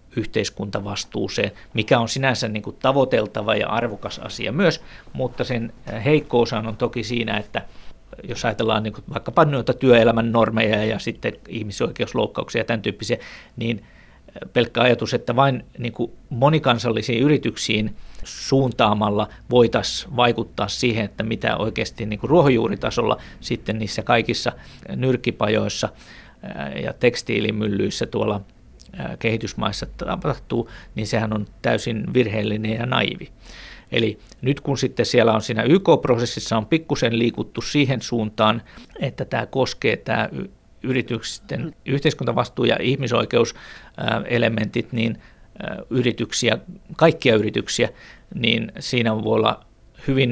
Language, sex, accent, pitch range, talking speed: Finnish, male, native, 110-125 Hz, 110 wpm